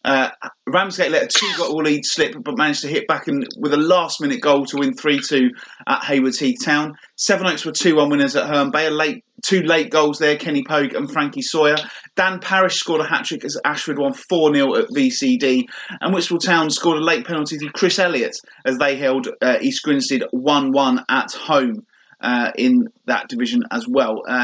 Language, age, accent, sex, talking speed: English, 30-49, British, male, 190 wpm